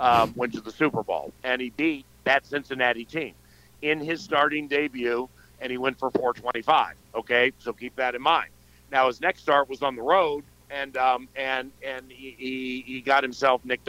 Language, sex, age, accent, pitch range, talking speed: English, male, 50-69, American, 130-155 Hz, 190 wpm